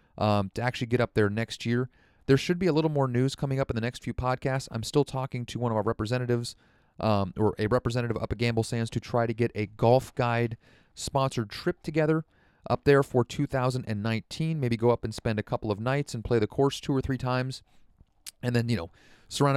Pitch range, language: 110-135 Hz, English